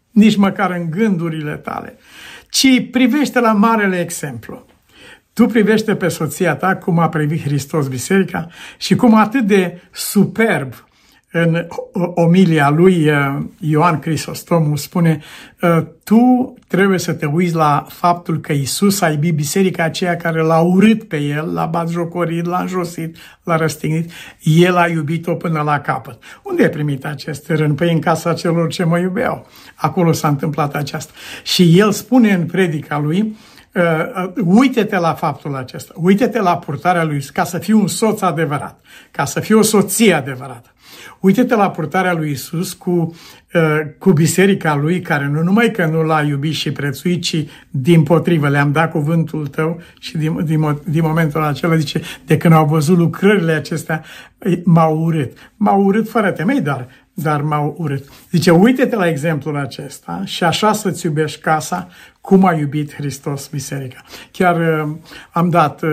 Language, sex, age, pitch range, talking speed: Romanian, male, 60-79, 155-185 Hz, 155 wpm